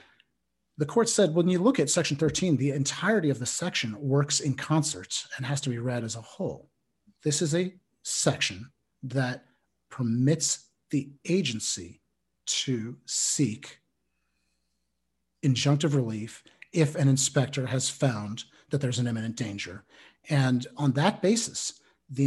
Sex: male